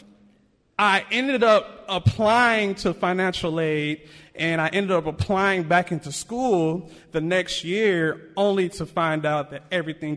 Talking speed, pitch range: 140 wpm, 150-190 Hz